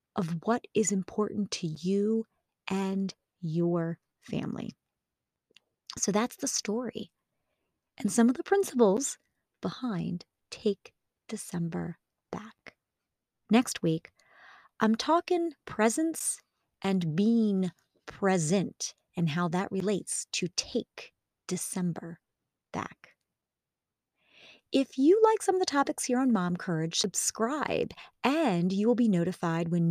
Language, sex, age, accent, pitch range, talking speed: English, female, 30-49, American, 175-230 Hz, 110 wpm